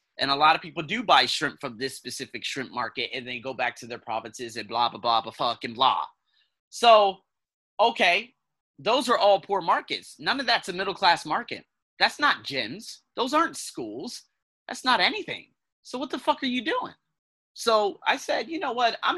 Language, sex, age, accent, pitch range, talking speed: English, male, 30-49, American, 155-230 Hz, 195 wpm